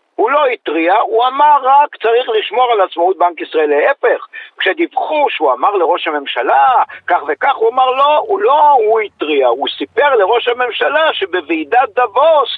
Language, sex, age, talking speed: Hebrew, male, 50-69, 155 wpm